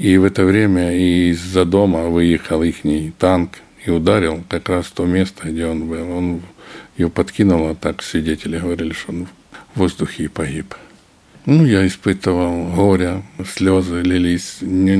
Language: Ukrainian